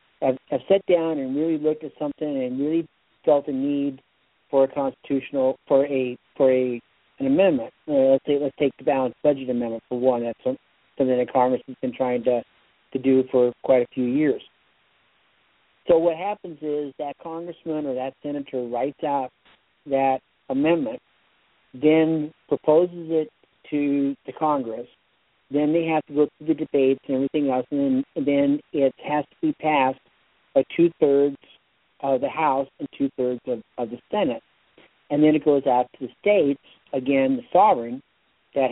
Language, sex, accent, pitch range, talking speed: English, male, American, 130-160 Hz, 170 wpm